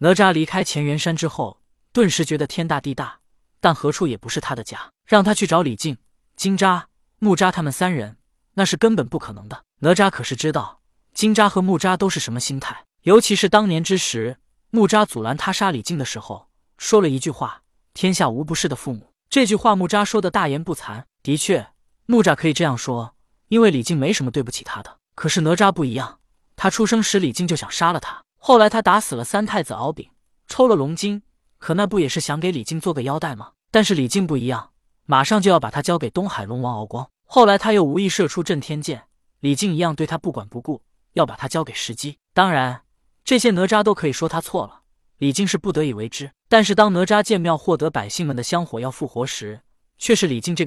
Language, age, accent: Chinese, 20-39, native